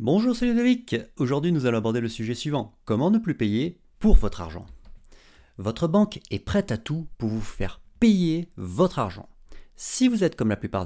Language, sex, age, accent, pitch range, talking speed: French, male, 30-49, French, 105-175 Hz, 195 wpm